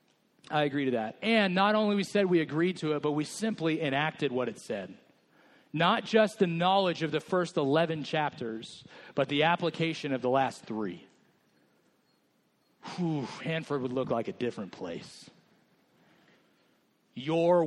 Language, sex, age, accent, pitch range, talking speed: English, male, 40-59, American, 120-165 Hz, 150 wpm